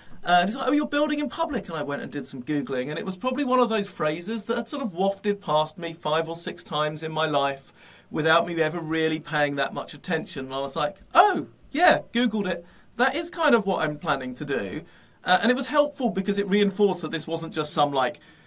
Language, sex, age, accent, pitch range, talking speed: English, male, 40-59, British, 145-195 Hz, 250 wpm